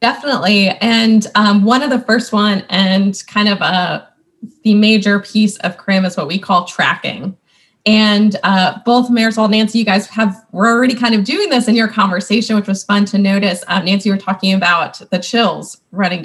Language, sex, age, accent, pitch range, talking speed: English, female, 20-39, American, 180-225 Hz, 200 wpm